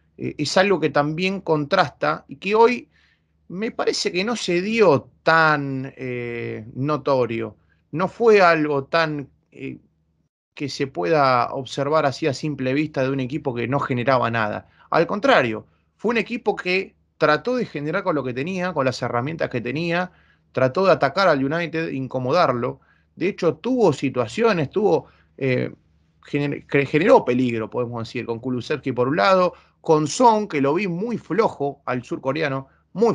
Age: 20-39